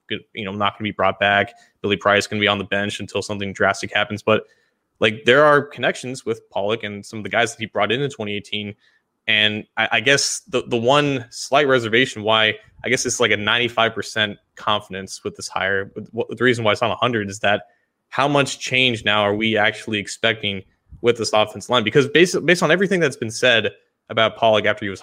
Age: 20-39